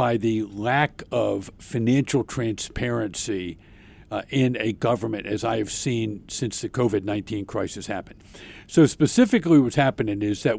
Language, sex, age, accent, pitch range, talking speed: English, male, 50-69, American, 110-140 Hz, 140 wpm